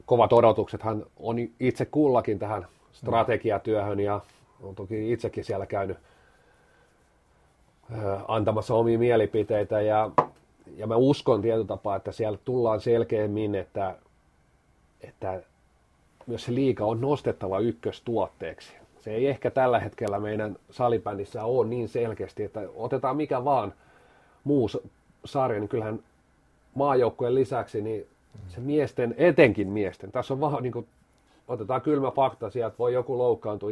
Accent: native